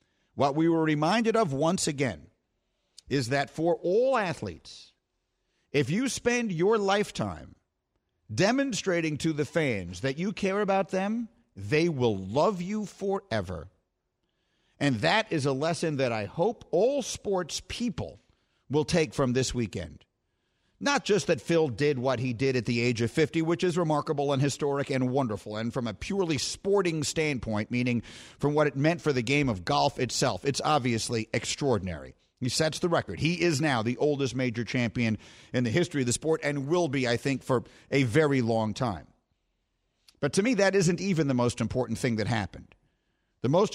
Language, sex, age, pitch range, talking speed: English, male, 50-69, 120-170 Hz, 175 wpm